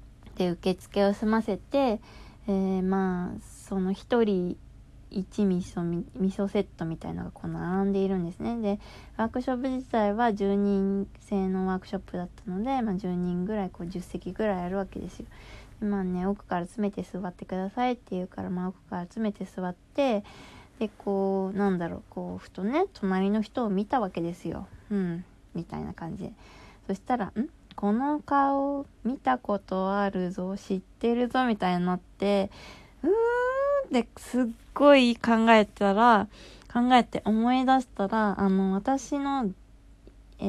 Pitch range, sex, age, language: 185-240 Hz, female, 20-39, Japanese